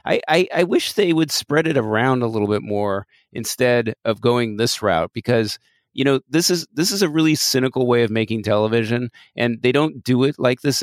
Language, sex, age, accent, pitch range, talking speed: English, male, 30-49, American, 110-130 Hz, 215 wpm